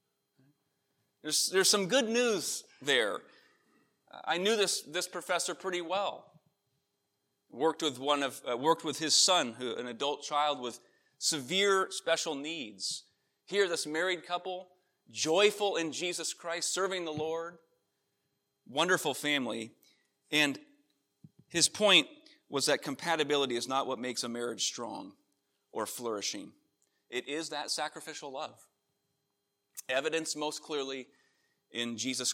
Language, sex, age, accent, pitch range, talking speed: English, male, 30-49, American, 130-175 Hz, 125 wpm